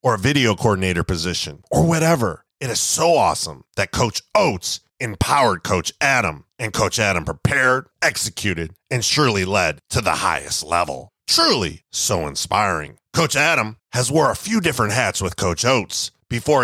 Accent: American